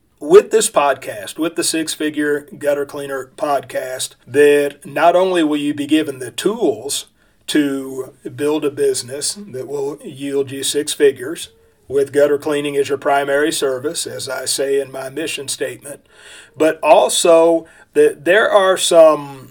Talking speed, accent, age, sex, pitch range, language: 150 wpm, American, 40-59, male, 140-160 Hz, English